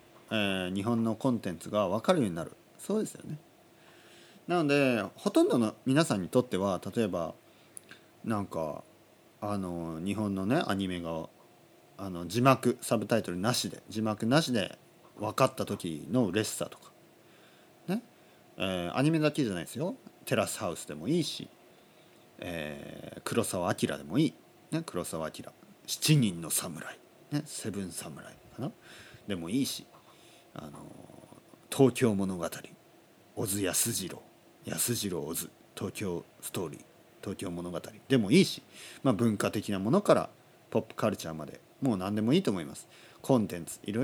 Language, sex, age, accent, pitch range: Japanese, male, 40-59, native, 95-130 Hz